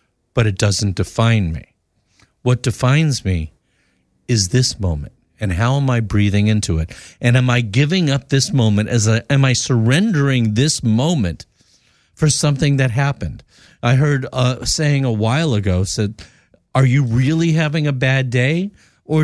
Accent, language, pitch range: American, English, 100-130 Hz